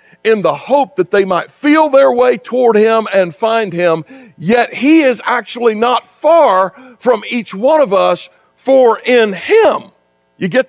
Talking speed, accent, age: 170 wpm, American, 60-79